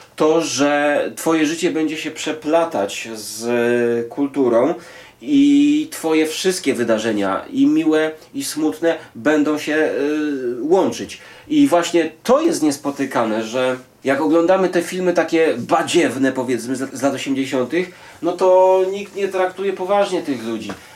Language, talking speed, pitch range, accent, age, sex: Polish, 130 wpm, 135-175 Hz, native, 30-49, male